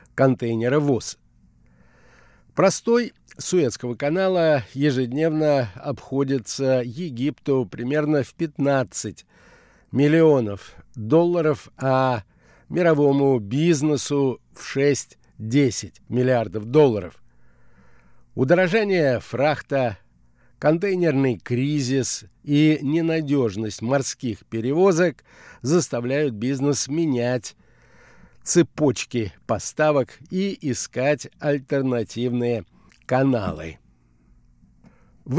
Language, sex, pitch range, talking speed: Russian, male, 120-160 Hz, 65 wpm